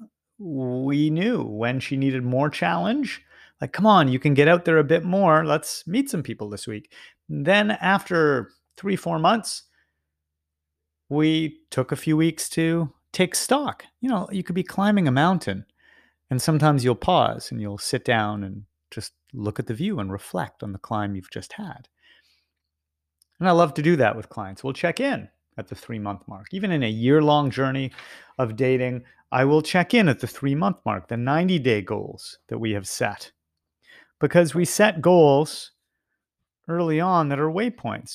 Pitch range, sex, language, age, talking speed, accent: 110-175 Hz, male, English, 30-49, 180 wpm, American